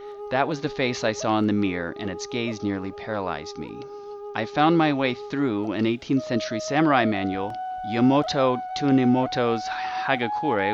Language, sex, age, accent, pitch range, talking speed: English, male, 30-49, American, 110-155 Hz, 155 wpm